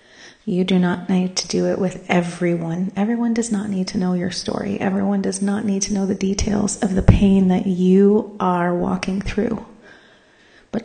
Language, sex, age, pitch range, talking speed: English, female, 30-49, 175-200 Hz, 190 wpm